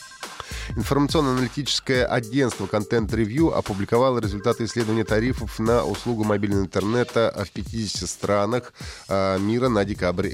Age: 30-49